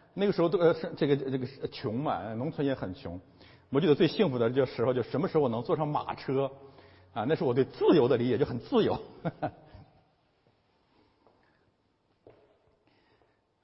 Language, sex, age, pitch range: Chinese, male, 50-69, 110-160 Hz